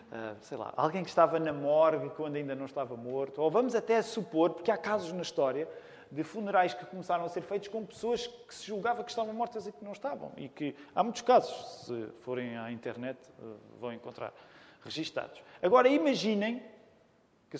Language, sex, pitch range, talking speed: Portuguese, male, 135-210 Hz, 195 wpm